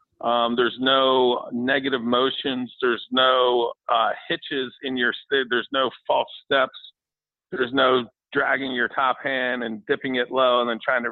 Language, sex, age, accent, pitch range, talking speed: English, male, 40-59, American, 125-140 Hz, 160 wpm